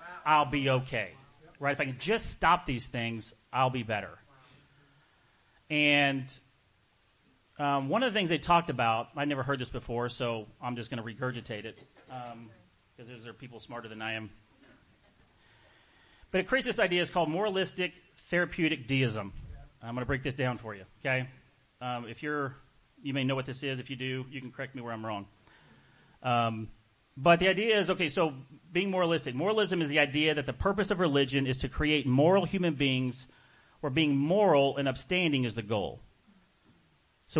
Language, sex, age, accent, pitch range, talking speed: English, male, 30-49, American, 120-155 Hz, 185 wpm